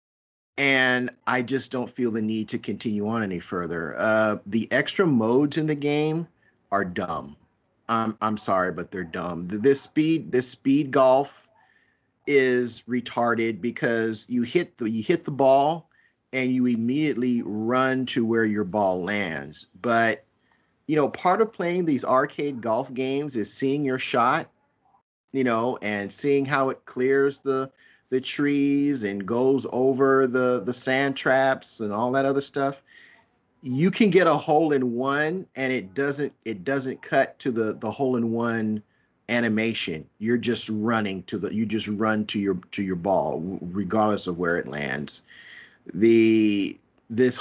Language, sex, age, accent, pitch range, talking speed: English, male, 40-59, American, 110-135 Hz, 160 wpm